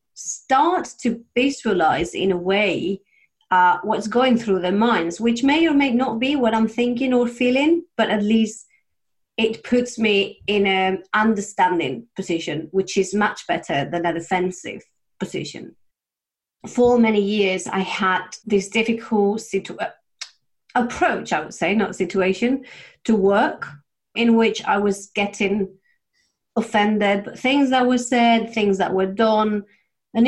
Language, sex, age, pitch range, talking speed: English, female, 30-49, 190-240 Hz, 145 wpm